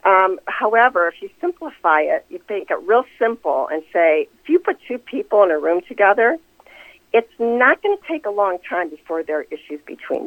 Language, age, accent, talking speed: English, 50-69, American, 205 wpm